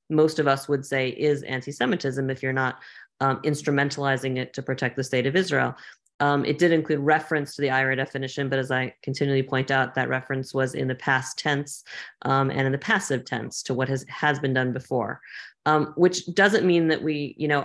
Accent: American